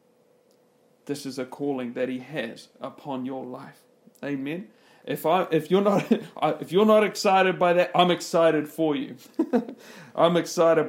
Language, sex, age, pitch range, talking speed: English, male, 40-59, 140-210 Hz, 155 wpm